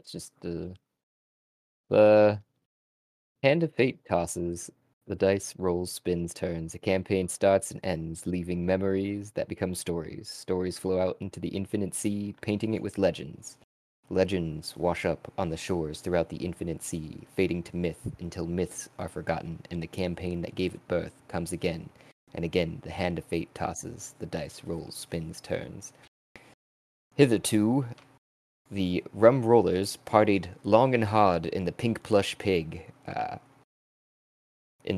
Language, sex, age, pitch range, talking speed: English, male, 20-39, 85-110 Hz, 150 wpm